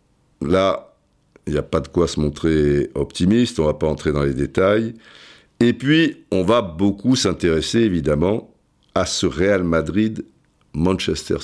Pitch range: 85-135 Hz